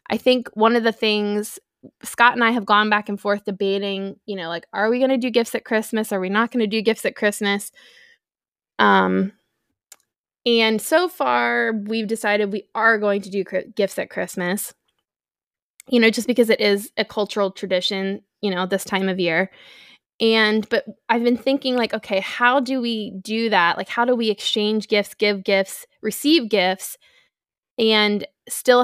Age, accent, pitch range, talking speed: 20-39, American, 200-230 Hz, 185 wpm